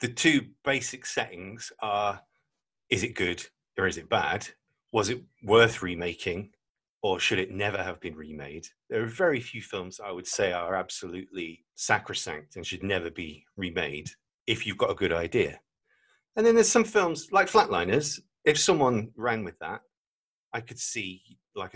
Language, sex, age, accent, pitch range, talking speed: English, male, 40-59, British, 90-130 Hz, 170 wpm